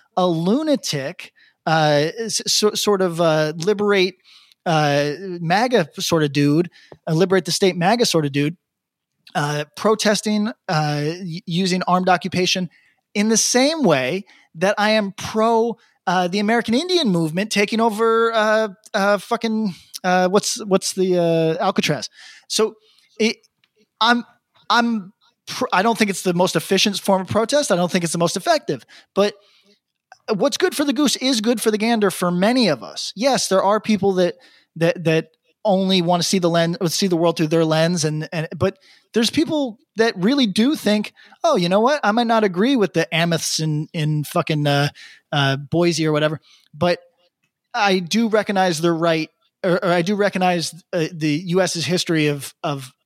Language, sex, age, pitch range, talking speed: English, male, 20-39, 165-215 Hz, 175 wpm